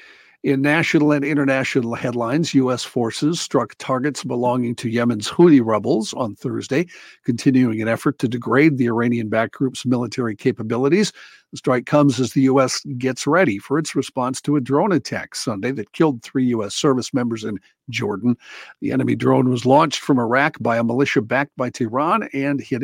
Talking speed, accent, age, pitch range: 170 wpm, American, 50-69, 120-145 Hz